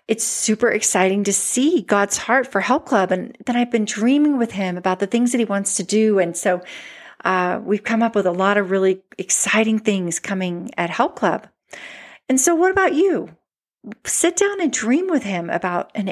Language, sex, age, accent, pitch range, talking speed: English, female, 40-59, American, 200-255 Hz, 205 wpm